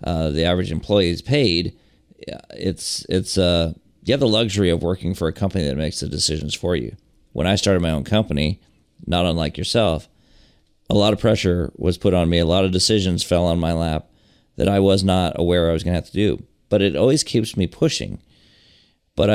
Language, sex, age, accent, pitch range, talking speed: English, male, 40-59, American, 85-105 Hz, 210 wpm